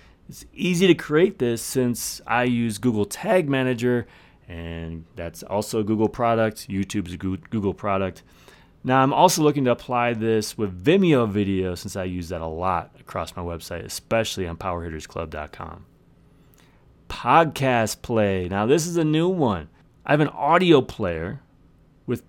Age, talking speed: 30-49, 155 wpm